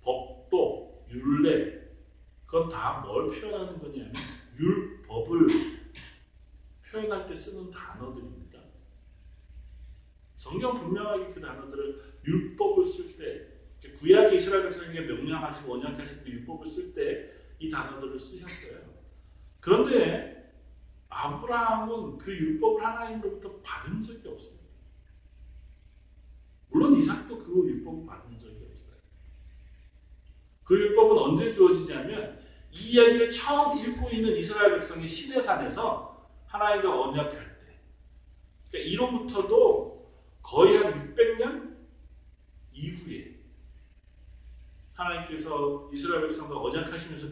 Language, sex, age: Korean, male, 40-59